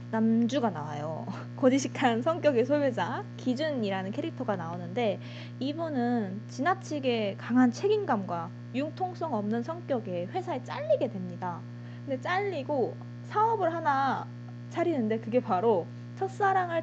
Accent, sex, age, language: native, female, 20-39, Korean